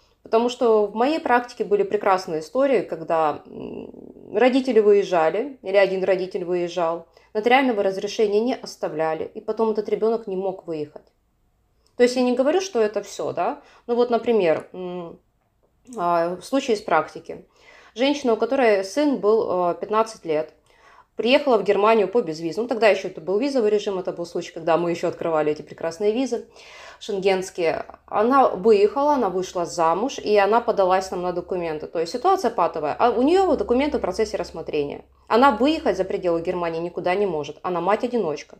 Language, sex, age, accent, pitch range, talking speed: Ukrainian, female, 20-39, native, 170-230 Hz, 160 wpm